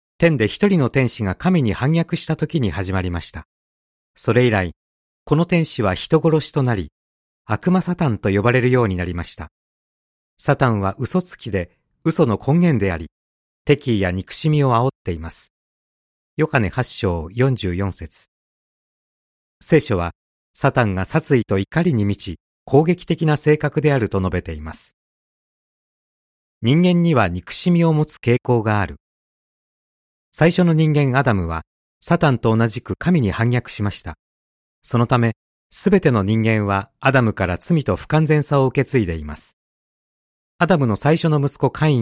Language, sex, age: Japanese, male, 40-59